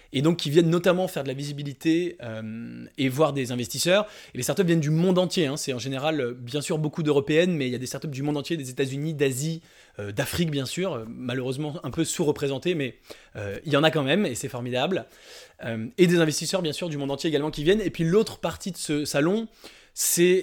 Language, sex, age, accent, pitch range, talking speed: English, male, 20-39, French, 135-170 Hz, 240 wpm